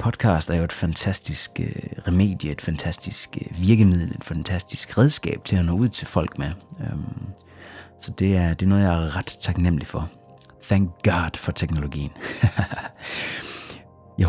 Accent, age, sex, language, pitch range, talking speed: native, 30-49, male, Danish, 85-105 Hz, 140 wpm